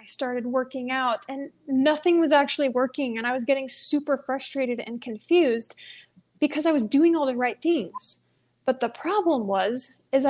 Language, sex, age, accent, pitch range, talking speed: English, female, 20-39, American, 245-295 Hz, 175 wpm